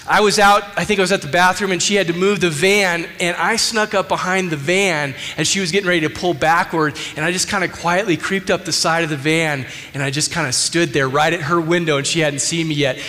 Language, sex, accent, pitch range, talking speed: English, male, American, 145-195 Hz, 285 wpm